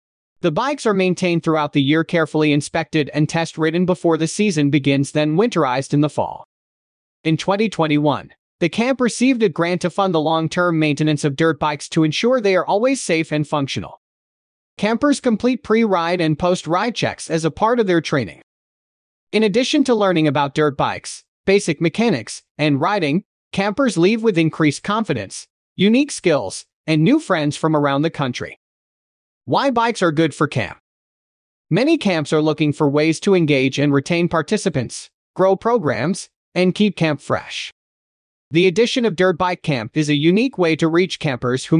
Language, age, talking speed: English, 30-49, 170 wpm